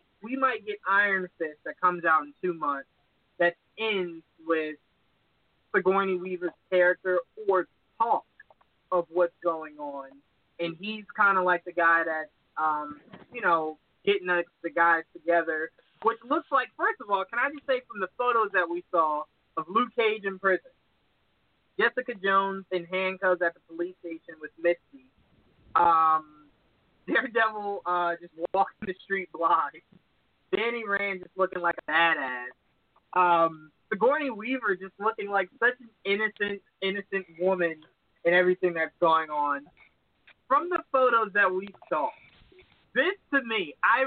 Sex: male